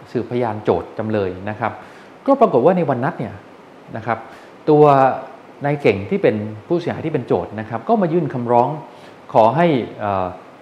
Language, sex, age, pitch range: Thai, male, 20-39, 110-155 Hz